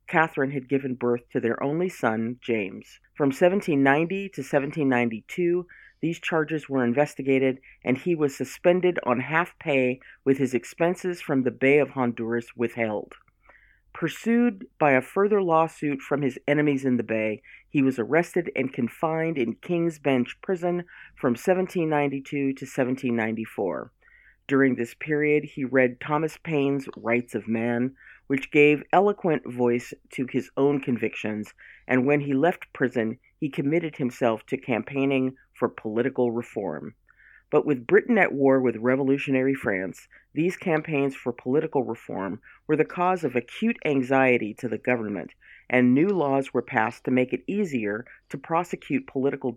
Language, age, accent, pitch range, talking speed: English, 40-59, American, 120-155 Hz, 150 wpm